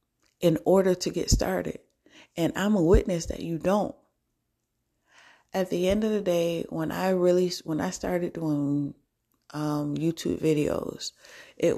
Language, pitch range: English, 140-165 Hz